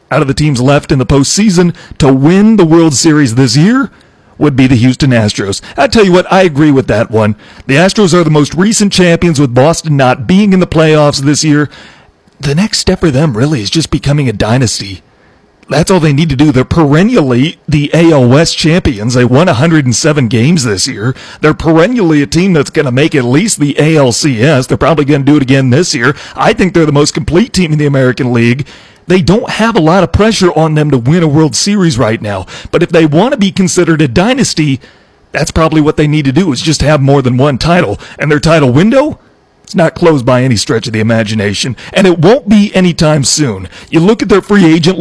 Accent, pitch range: American, 135-170 Hz